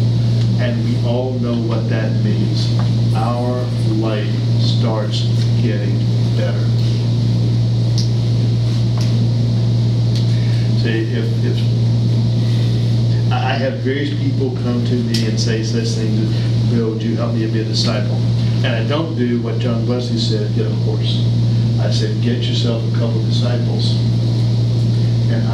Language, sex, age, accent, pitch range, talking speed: English, male, 50-69, American, 115-120 Hz, 130 wpm